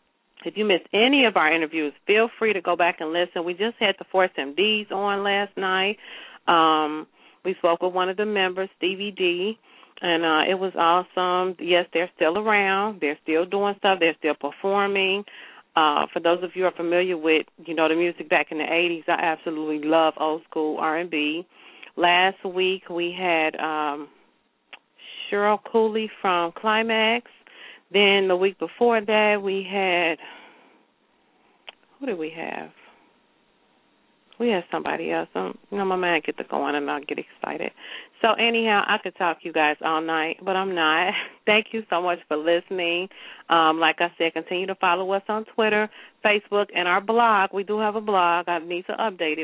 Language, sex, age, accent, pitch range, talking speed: English, female, 40-59, American, 165-205 Hz, 190 wpm